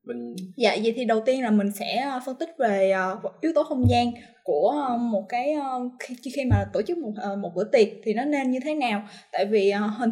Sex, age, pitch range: female, 10-29, 205-295 Hz